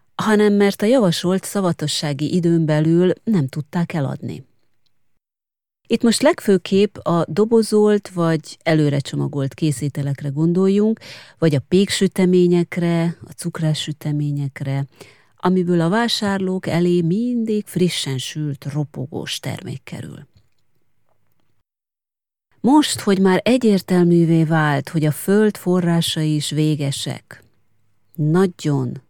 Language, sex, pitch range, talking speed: Hungarian, female, 145-185 Hz, 95 wpm